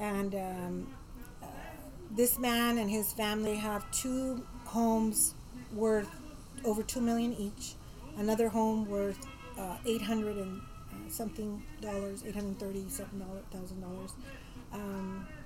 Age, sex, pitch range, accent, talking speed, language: 40-59, female, 190-230 Hz, American, 95 wpm, English